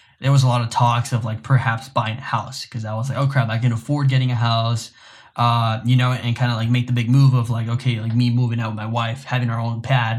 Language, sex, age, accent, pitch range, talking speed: English, male, 10-29, American, 115-135 Hz, 290 wpm